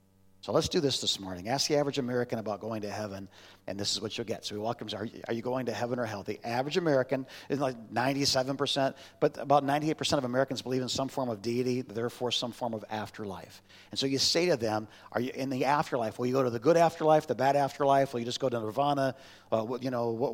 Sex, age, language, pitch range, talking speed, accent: male, 50-69, English, 115-170 Hz, 255 wpm, American